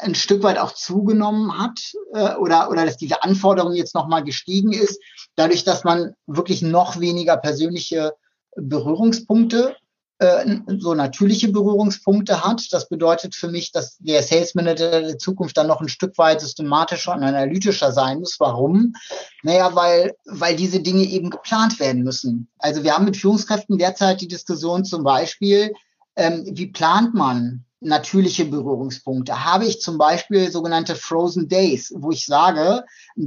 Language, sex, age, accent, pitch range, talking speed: German, male, 30-49, German, 160-200 Hz, 150 wpm